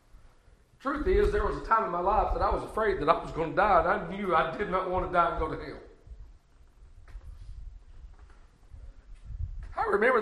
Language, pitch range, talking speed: English, 230-330 Hz, 200 wpm